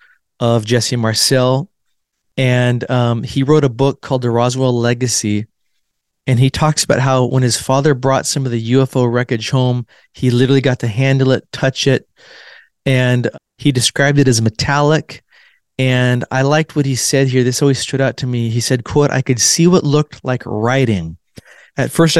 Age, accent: 20-39, American